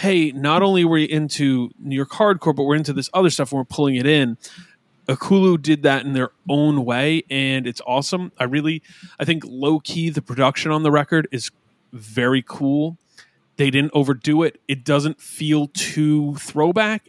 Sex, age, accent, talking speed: male, 30-49, American, 185 wpm